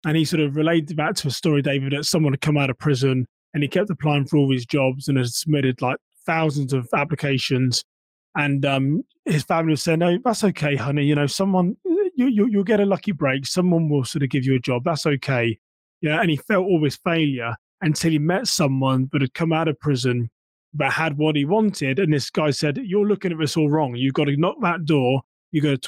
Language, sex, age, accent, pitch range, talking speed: English, male, 20-39, British, 135-160 Hz, 240 wpm